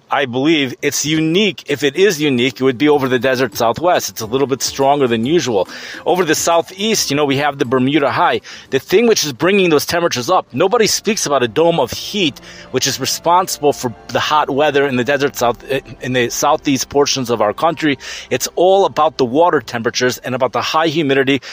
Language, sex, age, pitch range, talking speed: English, male, 30-49, 125-160 Hz, 210 wpm